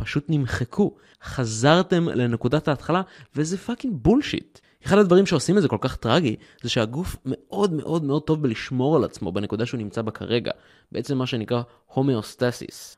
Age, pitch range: 20-39, 120-165 Hz